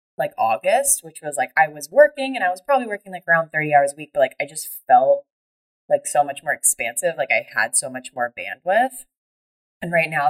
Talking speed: 225 wpm